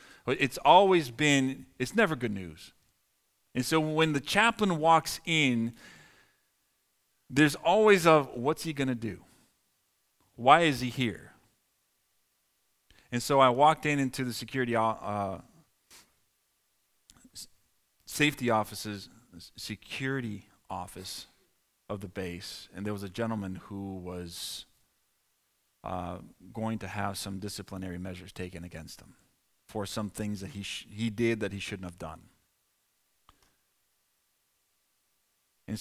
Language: English